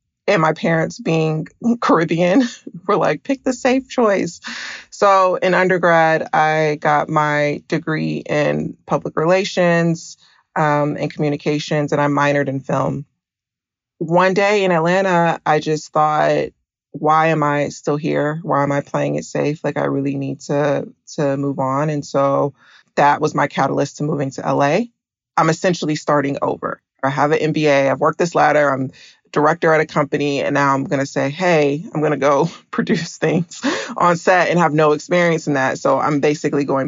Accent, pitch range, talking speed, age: American, 145-175 Hz, 175 wpm, 30-49